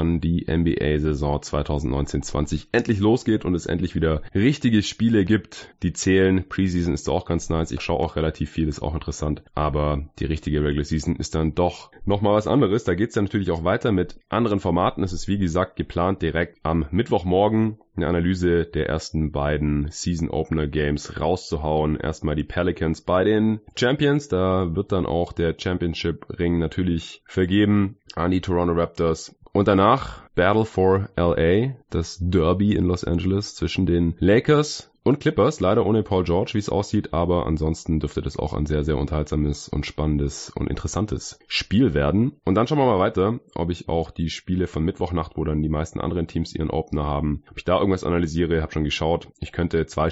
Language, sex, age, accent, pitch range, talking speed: German, male, 20-39, German, 75-95 Hz, 180 wpm